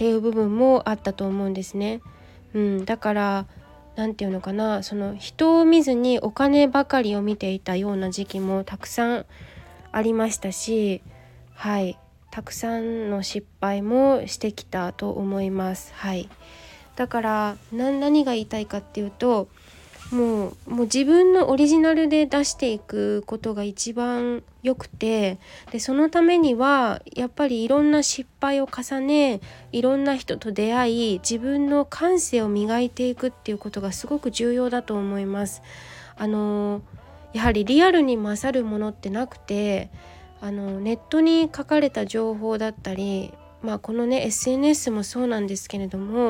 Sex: female